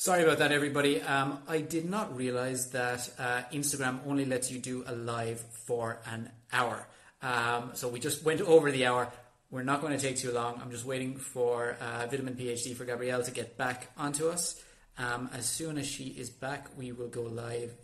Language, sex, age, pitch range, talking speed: English, male, 20-39, 120-140 Hz, 205 wpm